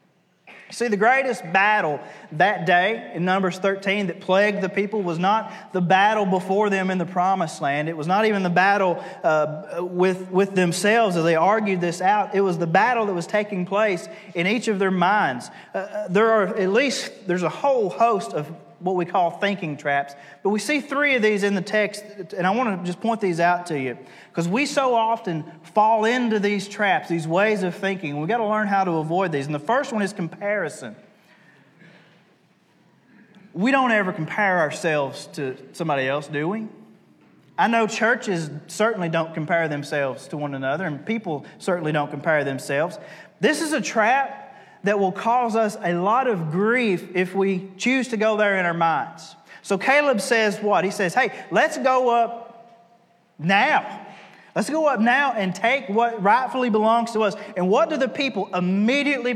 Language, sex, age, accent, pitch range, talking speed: English, male, 30-49, American, 175-225 Hz, 190 wpm